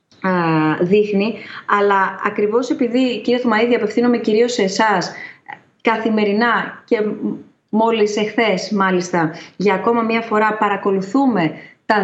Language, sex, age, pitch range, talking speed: Greek, female, 20-39, 195-230 Hz, 105 wpm